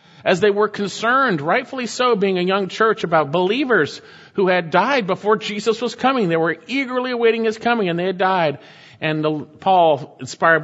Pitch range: 135-195 Hz